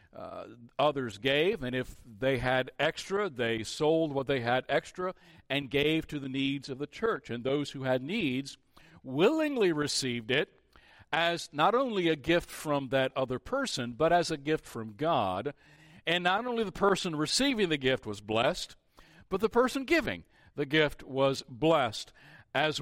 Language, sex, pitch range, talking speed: English, male, 135-180 Hz, 170 wpm